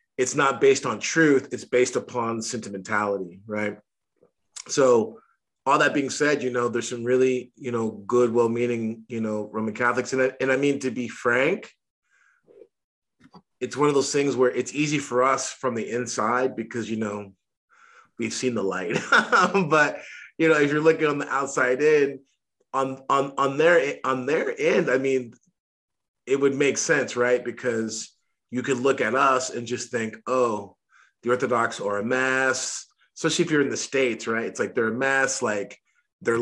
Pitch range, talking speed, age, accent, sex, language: 115-135 Hz, 185 wpm, 30-49, American, male, English